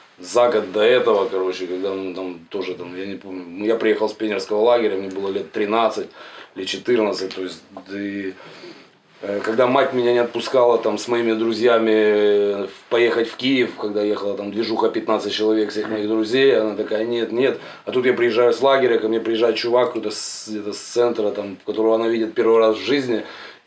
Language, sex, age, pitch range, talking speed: Russian, male, 20-39, 105-120 Hz, 195 wpm